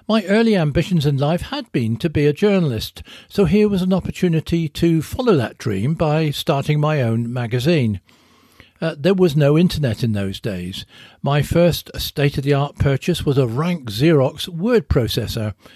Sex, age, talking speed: male, 60-79, 165 wpm